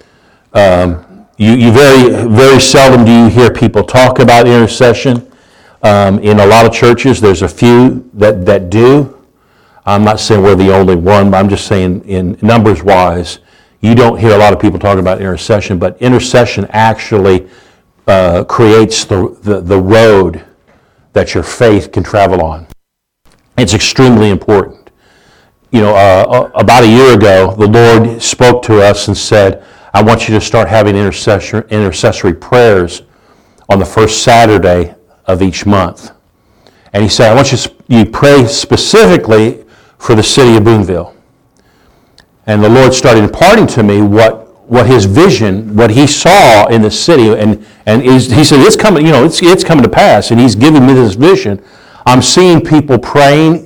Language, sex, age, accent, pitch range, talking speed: English, male, 50-69, American, 100-130 Hz, 170 wpm